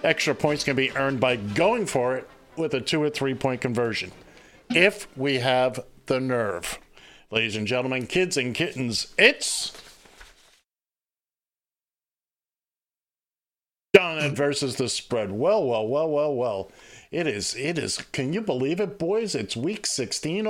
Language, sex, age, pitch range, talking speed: English, male, 50-69, 125-175 Hz, 145 wpm